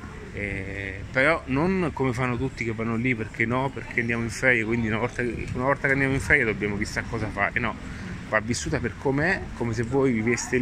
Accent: native